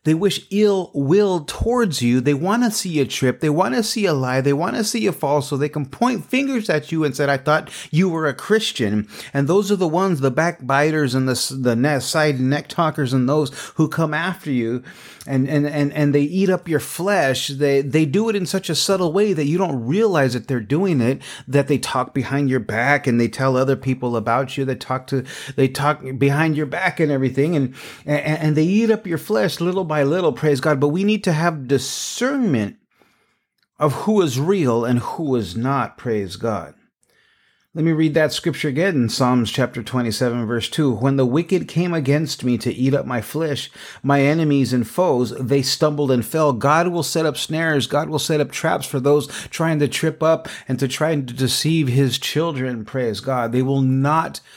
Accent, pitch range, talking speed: American, 130-165 Hz, 215 wpm